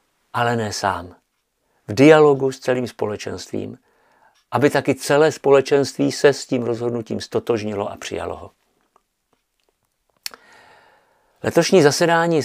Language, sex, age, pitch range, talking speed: Czech, male, 50-69, 105-135 Hz, 105 wpm